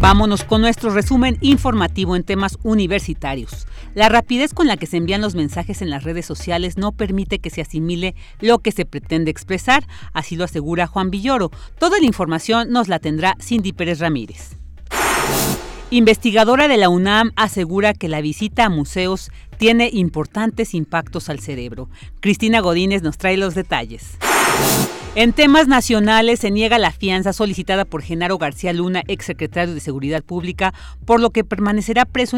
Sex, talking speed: female, 160 wpm